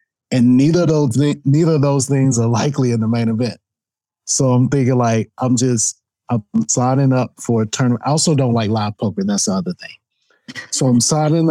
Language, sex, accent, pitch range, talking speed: English, male, American, 115-140 Hz, 195 wpm